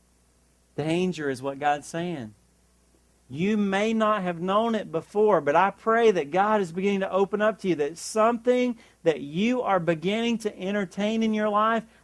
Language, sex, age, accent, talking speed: English, male, 40-59, American, 175 wpm